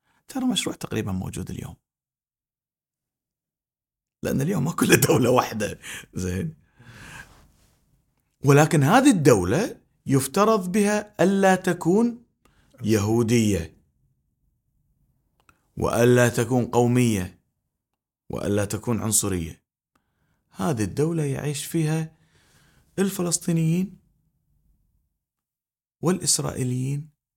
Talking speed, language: 70 wpm, Arabic